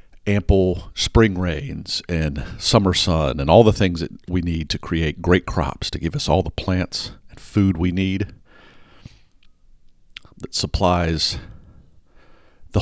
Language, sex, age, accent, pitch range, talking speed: English, male, 50-69, American, 80-100 Hz, 140 wpm